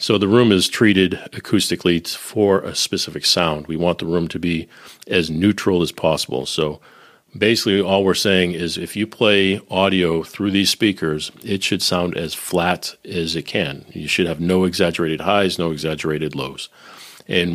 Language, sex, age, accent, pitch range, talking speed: English, male, 40-59, American, 80-95 Hz, 175 wpm